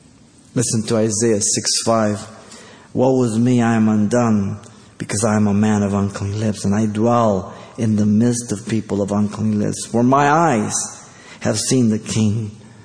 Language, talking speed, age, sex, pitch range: English, 175 wpm, 50-69, male, 105-125 Hz